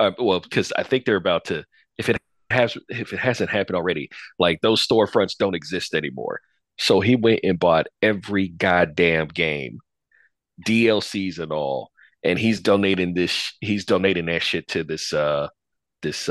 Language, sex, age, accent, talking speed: English, male, 40-59, American, 165 wpm